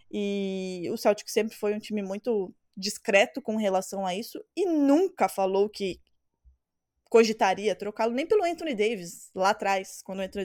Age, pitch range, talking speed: 20-39, 195-240 Hz, 160 wpm